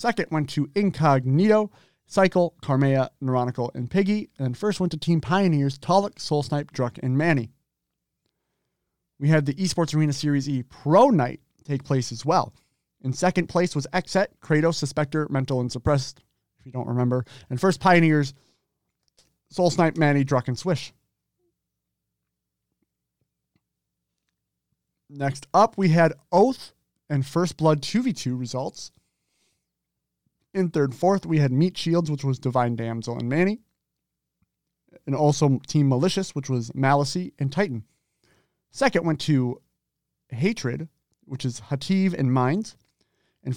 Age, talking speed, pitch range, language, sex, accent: 30-49, 135 wpm, 125-170 Hz, English, male, American